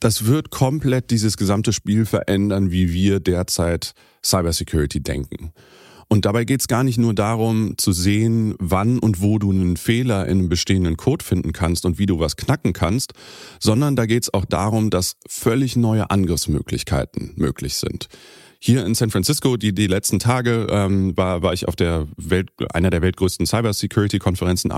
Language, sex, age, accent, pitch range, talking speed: German, male, 30-49, German, 90-115 Hz, 170 wpm